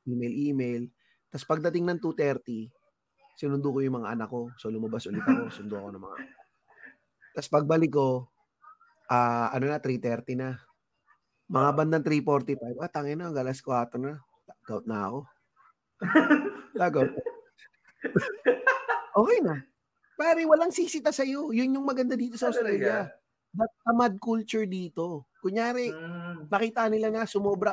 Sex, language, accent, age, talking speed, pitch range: male, Filipino, native, 20-39, 135 wpm, 140-235 Hz